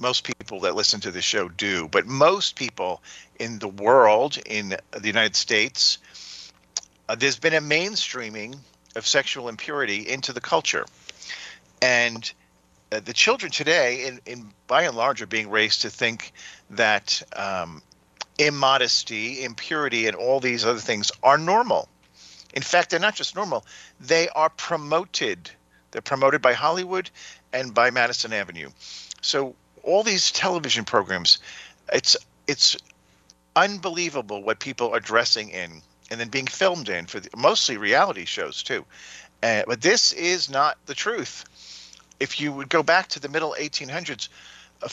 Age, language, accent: 50-69, English, American